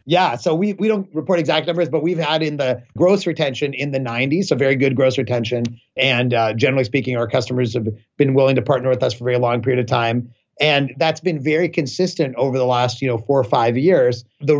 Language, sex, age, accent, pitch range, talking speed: English, male, 30-49, American, 125-155 Hz, 240 wpm